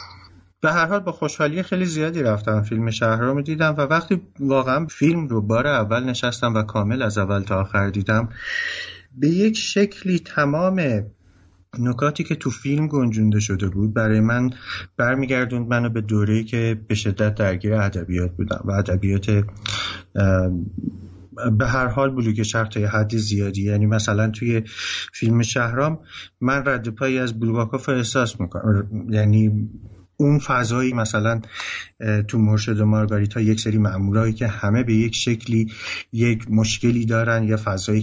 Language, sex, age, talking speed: Persian, male, 30-49, 140 wpm